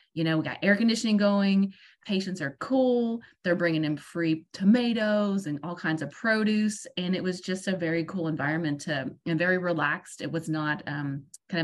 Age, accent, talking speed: 30-49, American, 190 wpm